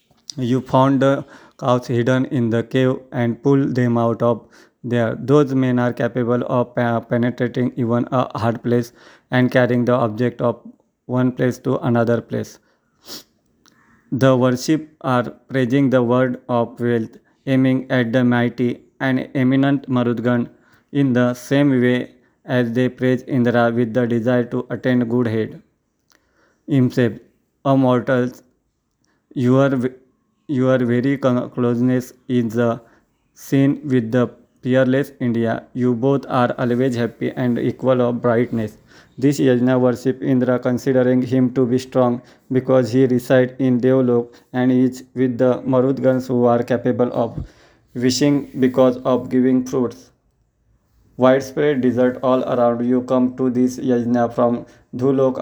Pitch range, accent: 120-130 Hz, Indian